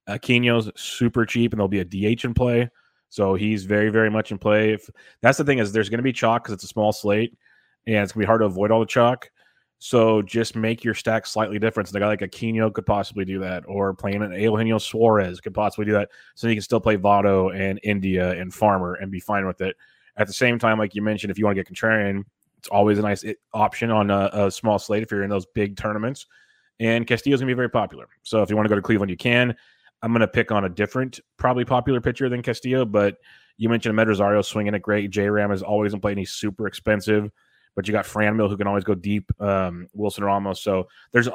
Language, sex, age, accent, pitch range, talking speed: English, male, 30-49, American, 100-115 Hz, 245 wpm